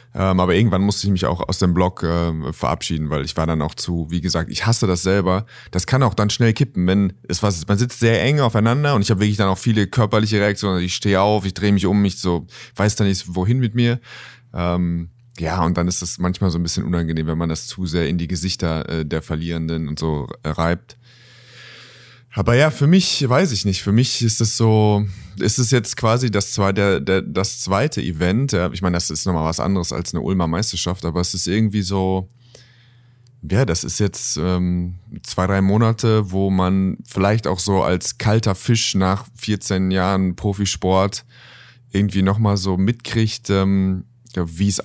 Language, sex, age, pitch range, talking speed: German, male, 30-49, 90-110 Hz, 205 wpm